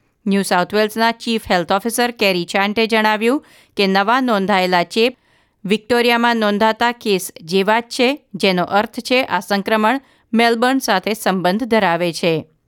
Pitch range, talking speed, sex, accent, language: 195-250 Hz, 135 wpm, female, native, Gujarati